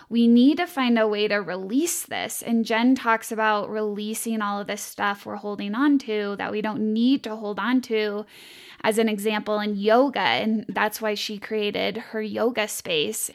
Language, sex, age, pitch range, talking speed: English, female, 10-29, 205-240 Hz, 195 wpm